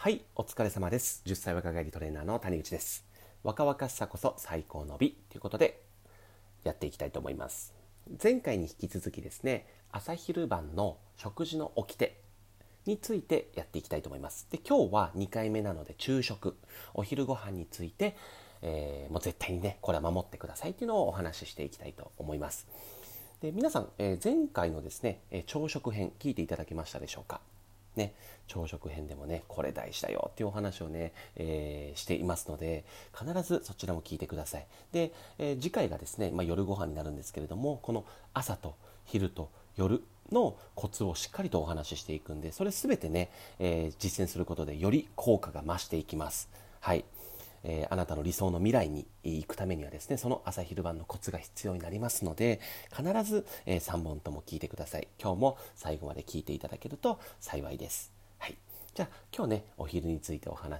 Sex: male